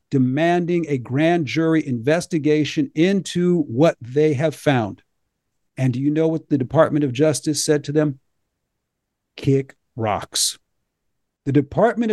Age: 50-69